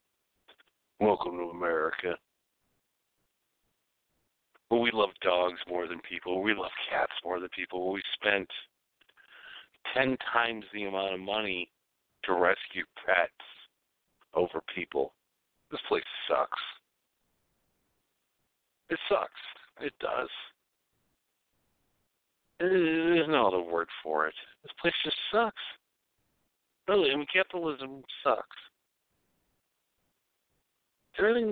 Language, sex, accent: English, male, American